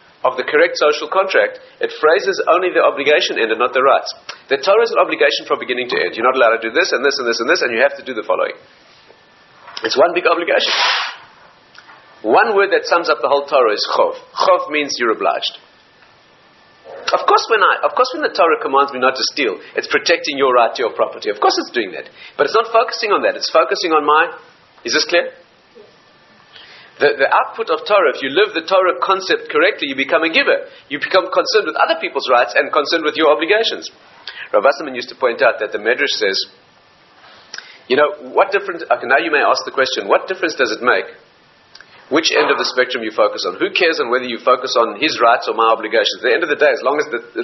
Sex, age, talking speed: male, 40-59, 230 wpm